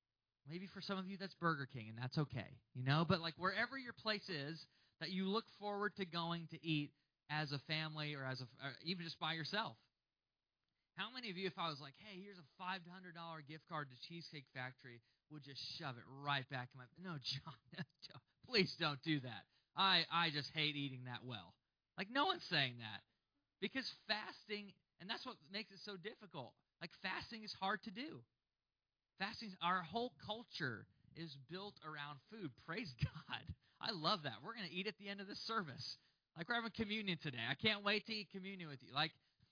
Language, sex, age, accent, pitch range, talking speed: English, male, 20-39, American, 140-195 Hz, 205 wpm